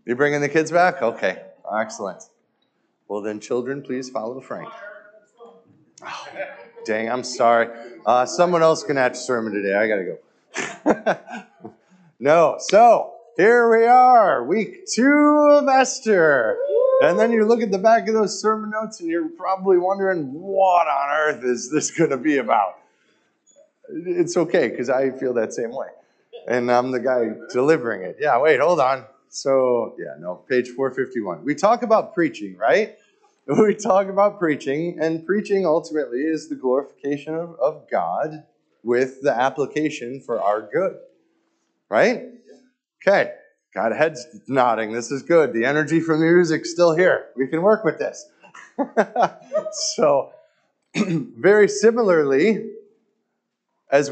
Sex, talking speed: male, 145 wpm